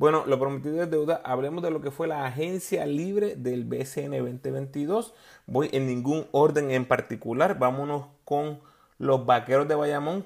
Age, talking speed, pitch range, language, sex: 30-49, 165 wpm, 120-145 Hz, Spanish, male